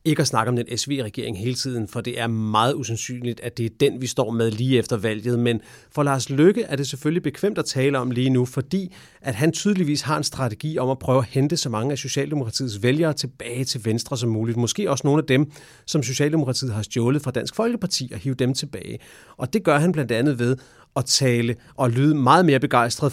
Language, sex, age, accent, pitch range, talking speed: English, male, 30-49, Danish, 120-150 Hz, 230 wpm